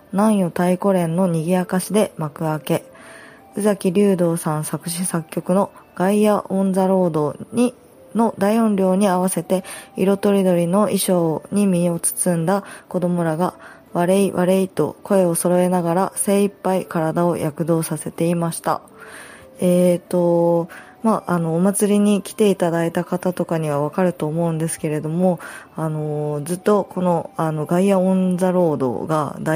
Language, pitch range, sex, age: Japanese, 155-185 Hz, female, 20-39